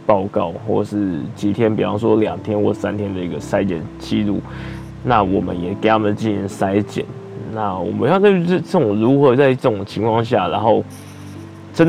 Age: 10-29